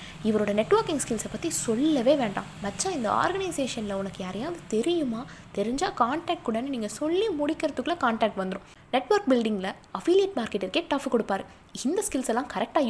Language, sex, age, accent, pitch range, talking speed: Tamil, female, 20-39, native, 200-305 Hz, 145 wpm